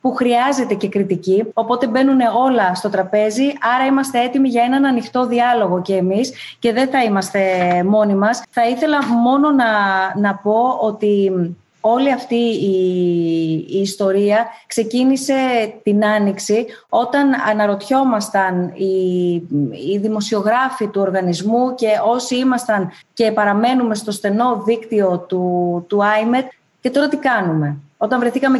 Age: 20-39